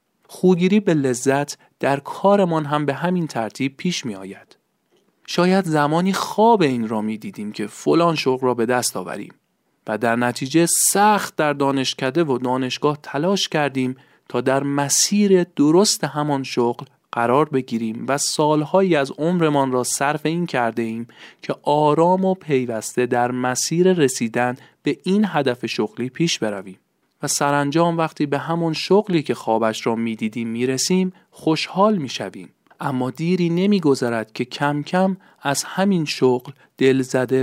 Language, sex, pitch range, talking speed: Persian, male, 120-165 Hz, 145 wpm